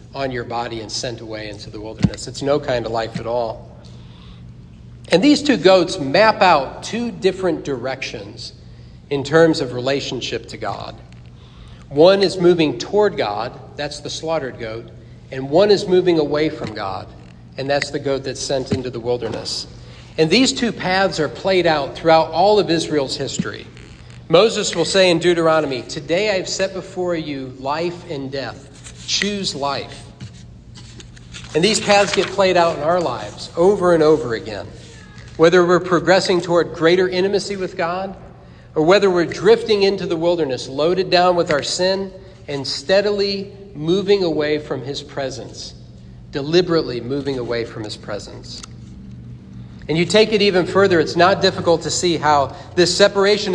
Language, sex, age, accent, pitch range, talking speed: English, male, 50-69, American, 120-185 Hz, 160 wpm